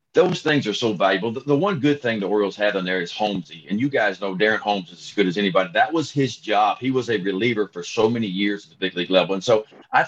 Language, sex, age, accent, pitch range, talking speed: English, male, 50-69, American, 95-130 Hz, 285 wpm